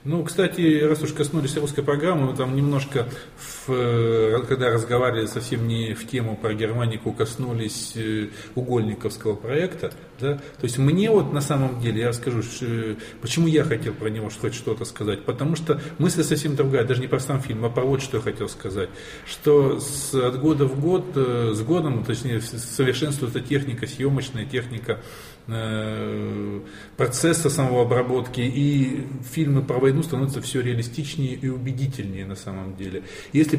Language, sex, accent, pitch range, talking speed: Russian, male, native, 115-145 Hz, 150 wpm